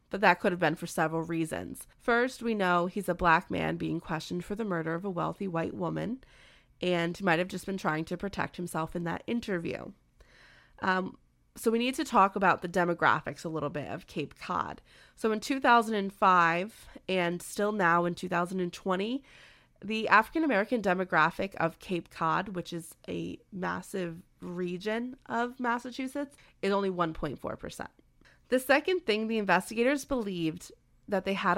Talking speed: 160 wpm